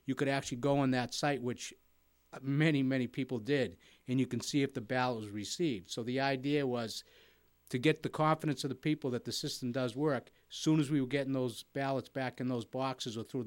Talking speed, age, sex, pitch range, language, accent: 225 wpm, 50-69, male, 120-145 Hz, English, American